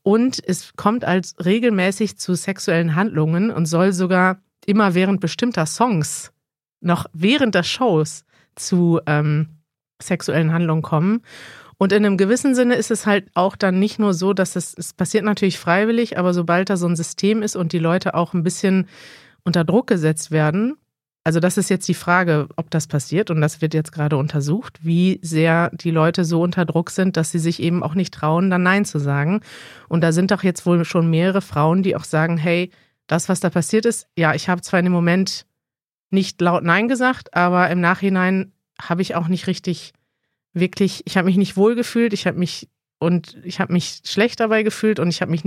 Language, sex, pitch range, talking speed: German, female, 165-195 Hz, 195 wpm